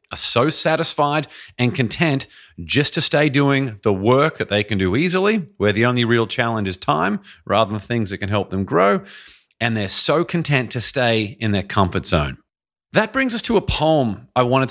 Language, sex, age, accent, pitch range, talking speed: English, male, 40-59, Australian, 100-140 Hz, 200 wpm